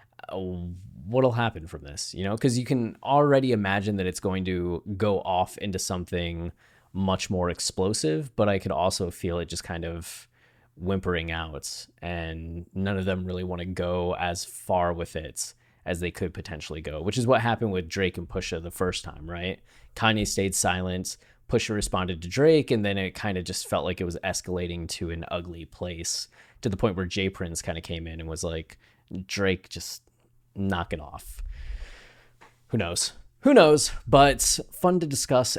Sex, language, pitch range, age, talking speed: male, English, 90-115 Hz, 20-39, 185 wpm